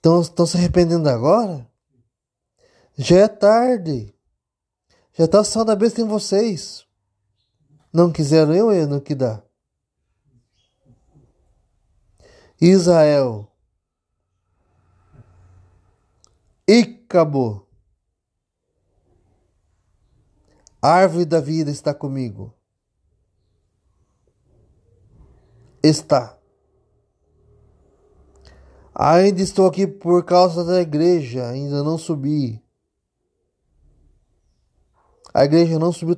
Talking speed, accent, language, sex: 75 wpm, Brazilian, Portuguese, male